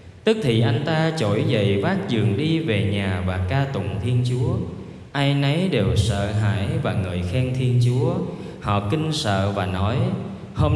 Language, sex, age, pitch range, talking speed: Vietnamese, male, 20-39, 105-140 Hz, 180 wpm